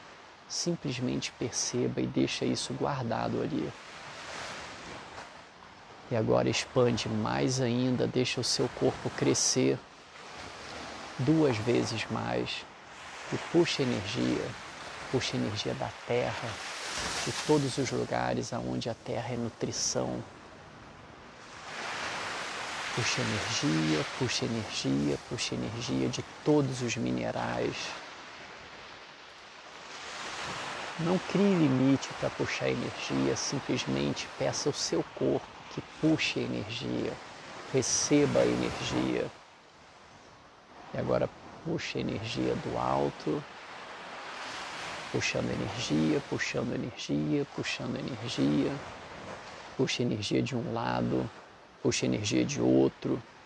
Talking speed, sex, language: 100 wpm, male, Portuguese